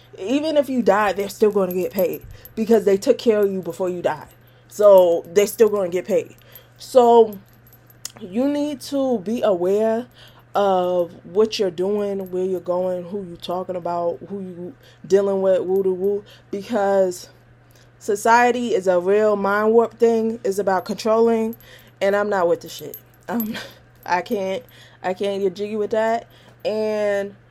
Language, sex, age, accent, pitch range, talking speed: English, female, 20-39, American, 180-230 Hz, 160 wpm